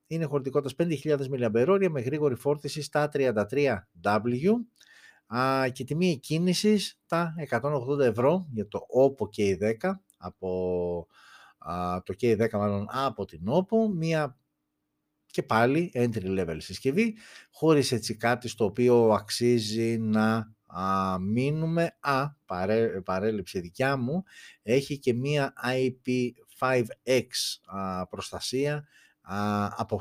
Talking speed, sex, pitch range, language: 105 wpm, male, 100-145 Hz, Greek